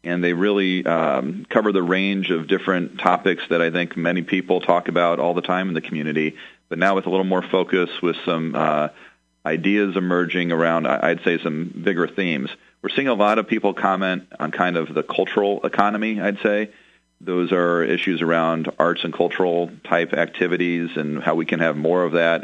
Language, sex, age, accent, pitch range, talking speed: English, male, 40-59, American, 85-100 Hz, 195 wpm